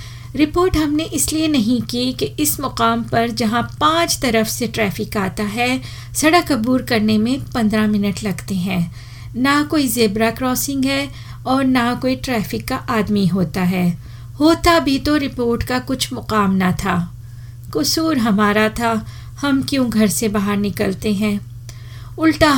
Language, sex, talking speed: Hindi, female, 150 wpm